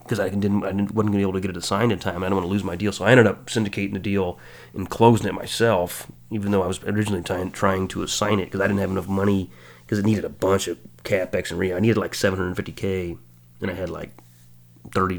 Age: 30-49